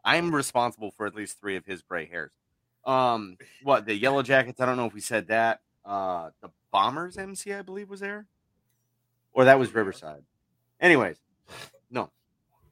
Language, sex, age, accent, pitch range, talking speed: English, male, 30-49, American, 105-135 Hz, 170 wpm